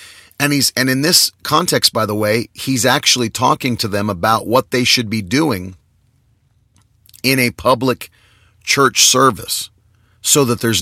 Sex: male